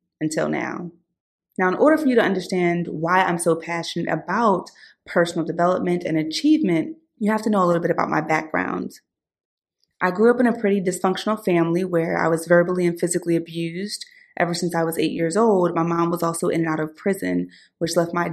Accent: American